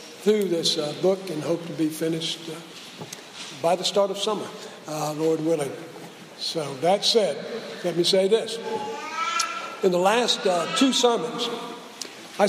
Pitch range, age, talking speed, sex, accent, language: 170-250 Hz, 60-79, 155 wpm, male, American, English